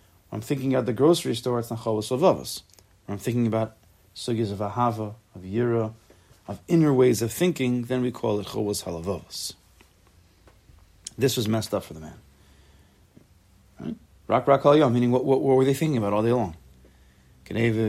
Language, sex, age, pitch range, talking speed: English, male, 30-49, 95-130 Hz, 180 wpm